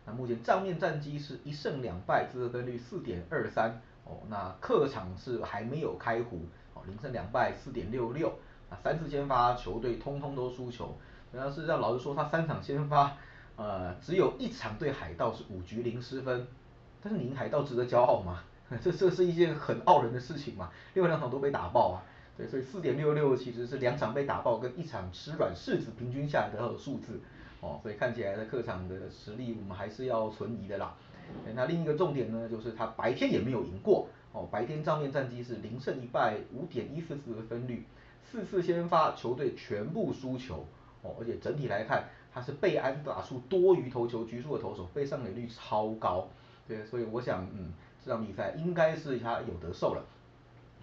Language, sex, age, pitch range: Chinese, male, 30-49, 115-145 Hz